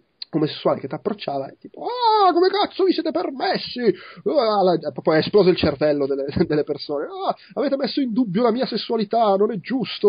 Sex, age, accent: male, 30-49, native